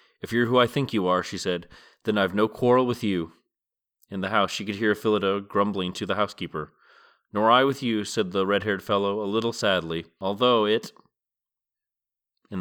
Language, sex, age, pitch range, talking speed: English, male, 30-49, 95-120 Hz, 190 wpm